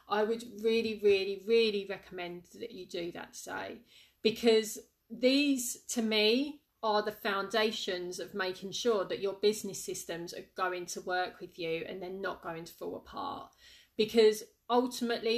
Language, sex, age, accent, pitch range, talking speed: English, female, 30-49, British, 190-225 Hz, 155 wpm